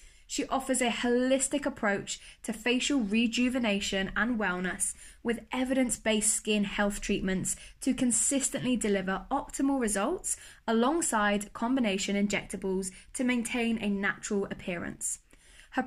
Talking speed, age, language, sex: 110 wpm, 10-29, English, female